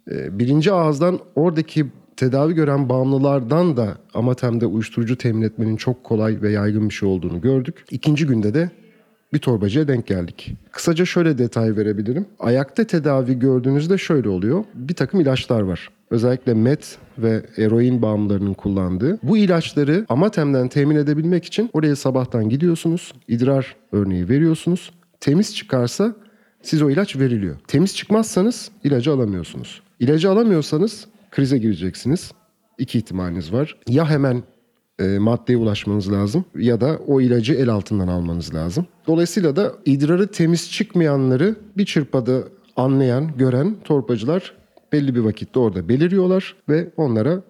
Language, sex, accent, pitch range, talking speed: Turkish, male, native, 115-170 Hz, 135 wpm